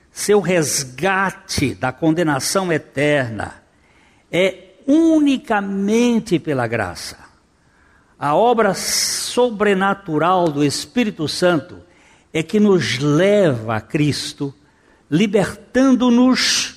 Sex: male